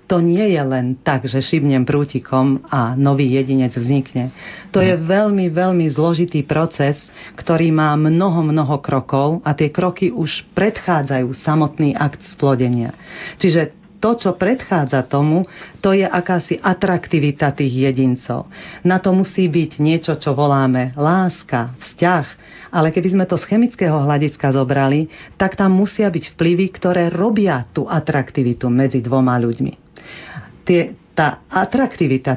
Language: Slovak